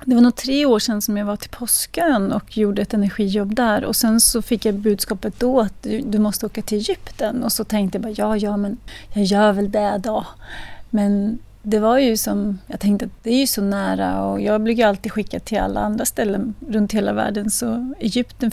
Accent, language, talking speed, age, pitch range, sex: native, Swedish, 225 wpm, 30-49, 205-250 Hz, female